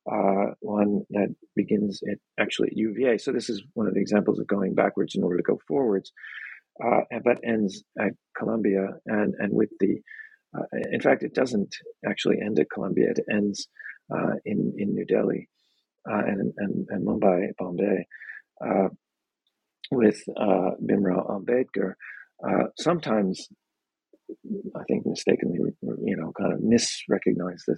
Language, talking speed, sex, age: English, 155 wpm, male, 40-59